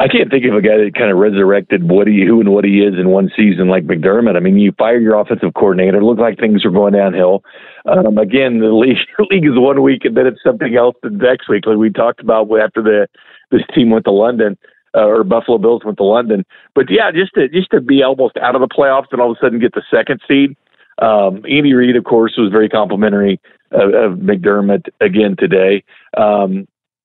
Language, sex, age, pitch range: English, male, 50-69, 100-125 Hz